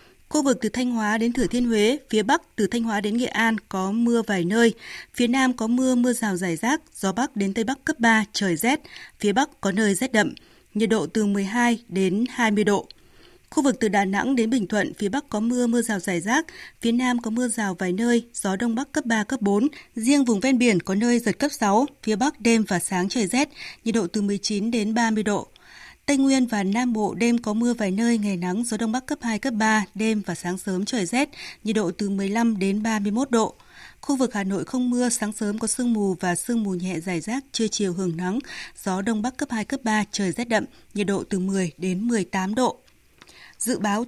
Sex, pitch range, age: female, 200-250 Hz, 20-39